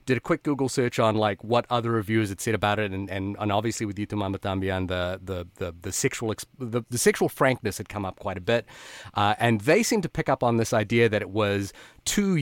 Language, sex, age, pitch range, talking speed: English, male, 30-49, 105-130 Hz, 240 wpm